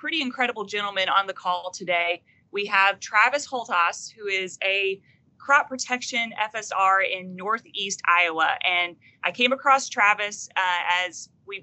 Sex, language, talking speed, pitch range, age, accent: female, English, 145 wpm, 180-220 Hz, 30-49, American